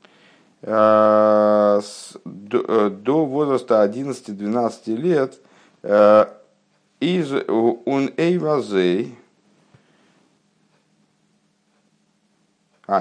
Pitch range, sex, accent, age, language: 95-125 Hz, male, native, 50-69, Russian